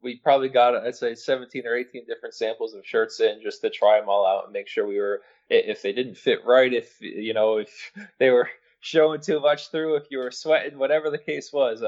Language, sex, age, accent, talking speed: English, male, 20-39, American, 235 wpm